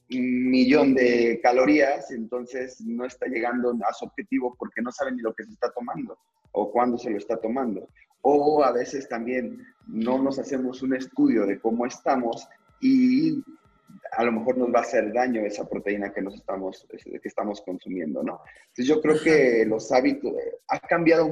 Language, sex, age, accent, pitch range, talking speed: Spanish, male, 30-49, Mexican, 110-140 Hz, 180 wpm